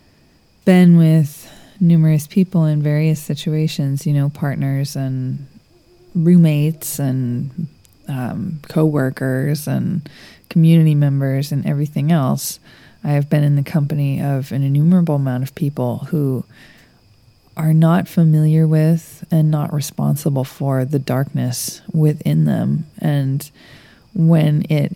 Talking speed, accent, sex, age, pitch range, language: 120 wpm, American, female, 20-39, 140-165 Hz, English